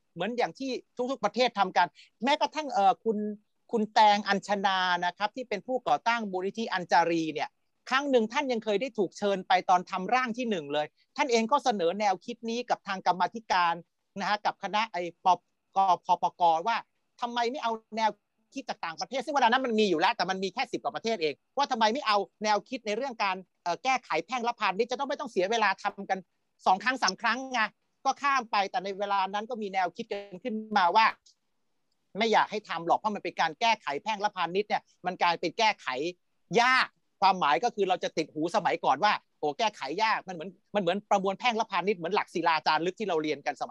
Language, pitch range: Thai, 185-245 Hz